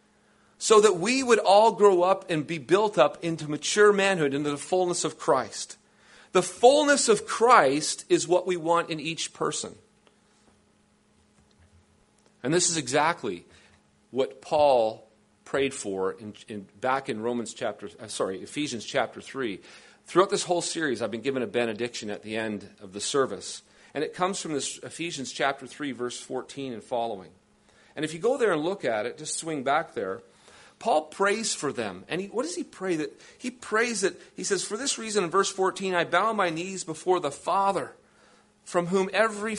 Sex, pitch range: male, 130-195 Hz